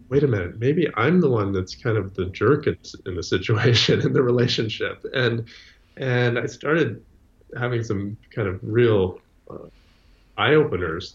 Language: English